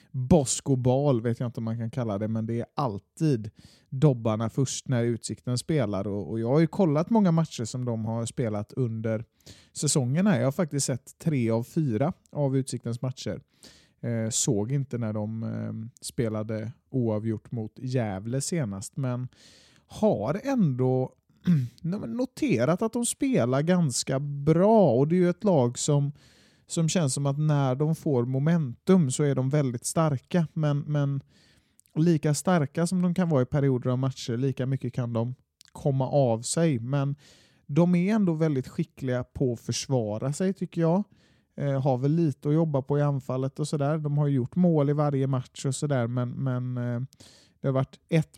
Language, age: Swedish, 30-49